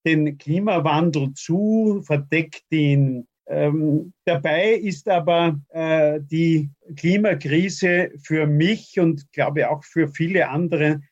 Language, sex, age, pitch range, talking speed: German, male, 50-69, 150-190 Hz, 110 wpm